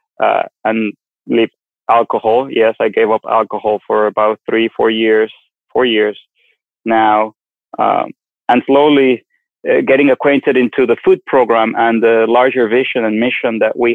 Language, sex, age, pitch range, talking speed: English, male, 20-39, 110-130 Hz, 145 wpm